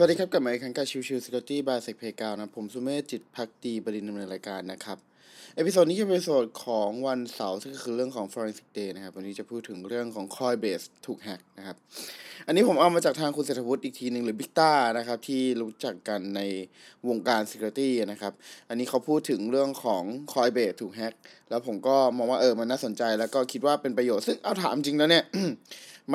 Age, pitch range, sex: 20-39, 110-145 Hz, male